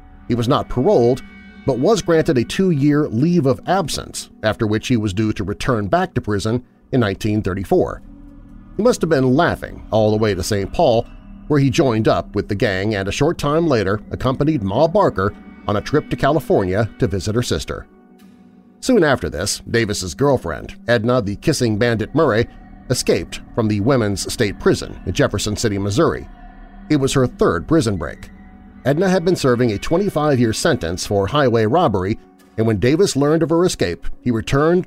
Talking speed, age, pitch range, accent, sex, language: 180 wpm, 40-59, 100-155 Hz, American, male, English